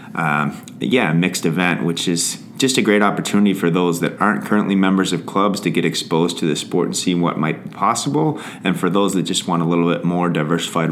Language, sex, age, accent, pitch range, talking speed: English, male, 30-49, American, 80-90 Hz, 230 wpm